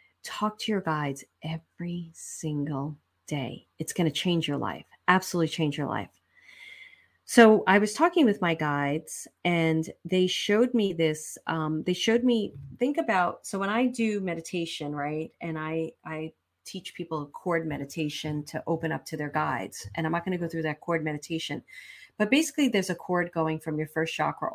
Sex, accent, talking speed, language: female, American, 180 wpm, English